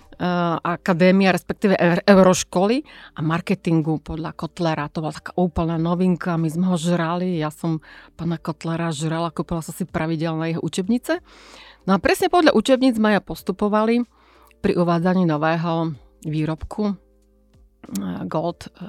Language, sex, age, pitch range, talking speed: Slovak, female, 40-59, 160-195 Hz, 130 wpm